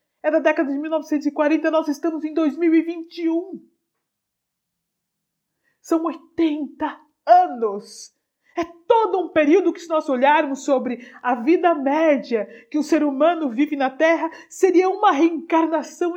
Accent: Brazilian